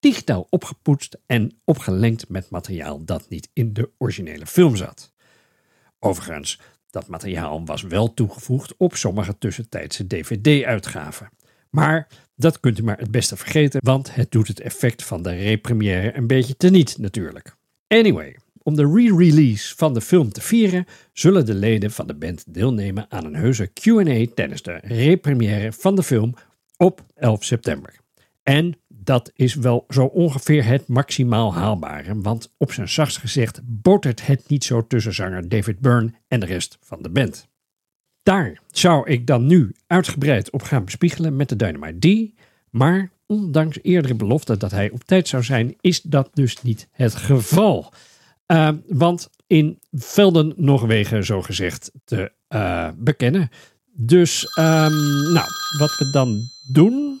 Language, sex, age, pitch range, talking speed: Dutch, male, 50-69, 110-155 Hz, 150 wpm